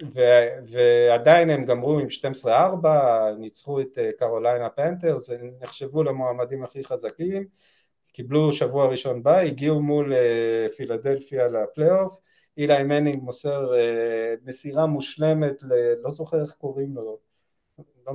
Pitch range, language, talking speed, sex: 125-155 Hz, Hebrew, 125 wpm, male